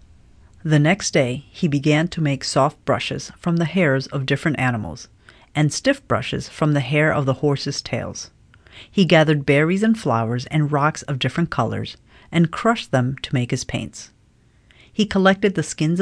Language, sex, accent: English, female, American